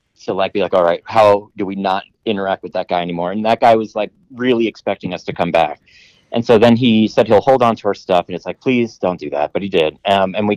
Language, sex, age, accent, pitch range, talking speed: English, male, 30-49, American, 95-120 Hz, 285 wpm